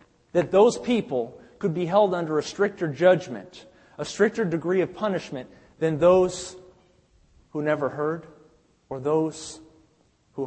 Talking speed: 130 wpm